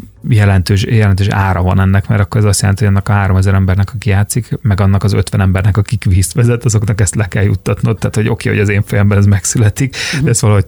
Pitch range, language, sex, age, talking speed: 95-115 Hz, Hungarian, male, 30-49, 240 wpm